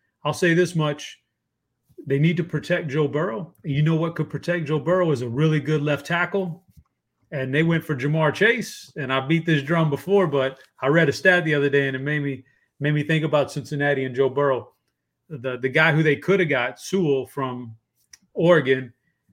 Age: 30-49